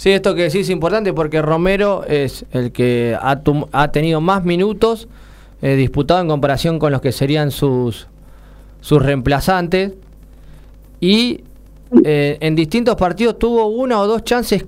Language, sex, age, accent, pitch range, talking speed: Spanish, male, 20-39, Argentinian, 150-195 Hz, 150 wpm